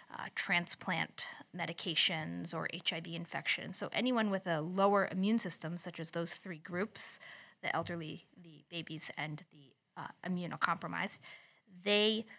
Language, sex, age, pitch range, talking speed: English, female, 30-49, 170-205 Hz, 130 wpm